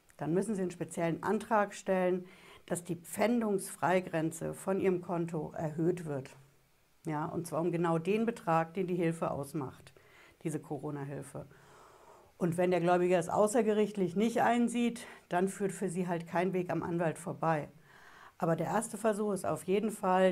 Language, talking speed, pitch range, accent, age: German, 155 wpm, 165-200 Hz, German, 60-79